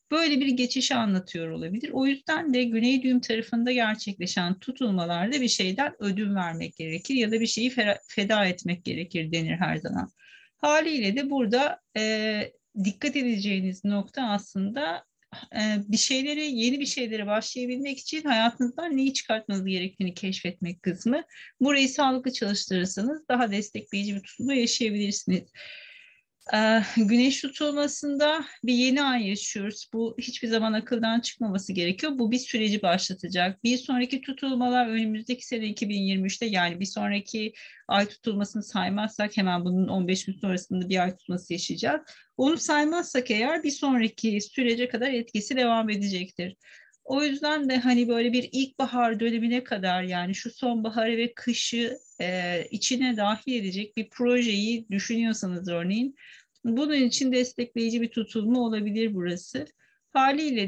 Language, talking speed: Turkish, 130 wpm